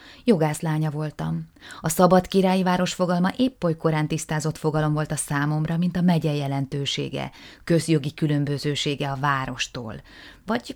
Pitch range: 135-165 Hz